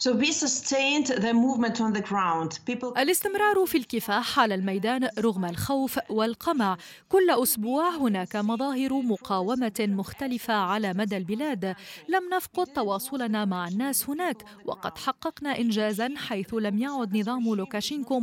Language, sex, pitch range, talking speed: Arabic, female, 210-270 Hz, 100 wpm